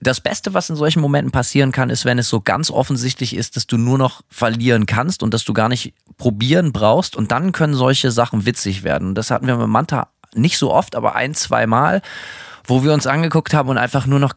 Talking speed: 240 wpm